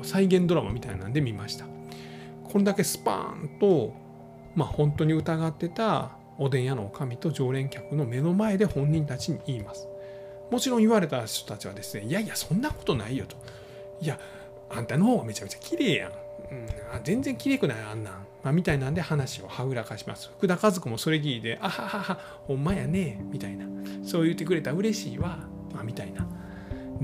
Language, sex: Japanese, male